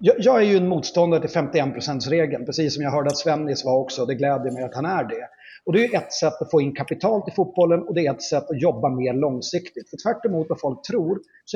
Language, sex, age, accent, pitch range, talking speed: Swedish, male, 30-49, native, 135-185 Hz, 265 wpm